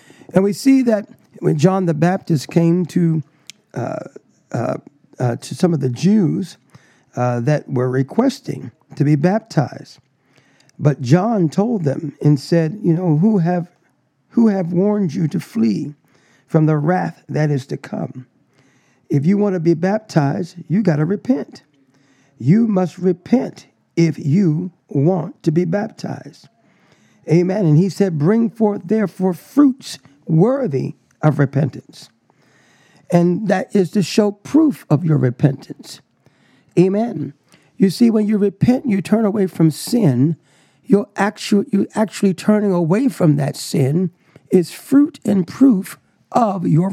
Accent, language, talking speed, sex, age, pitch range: American, English, 145 wpm, male, 50-69, 150-205 Hz